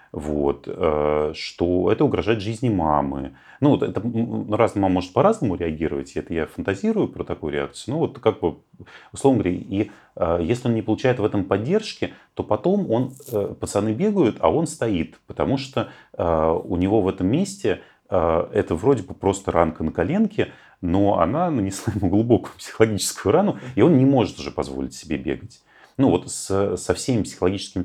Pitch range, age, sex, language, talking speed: 80-115 Hz, 30-49, male, Russian, 155 wpm